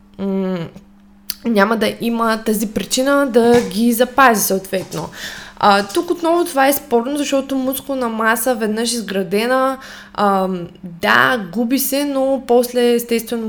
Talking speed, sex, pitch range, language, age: 120 wpm, female, 195-240 Hz, Bulgarian, 20-39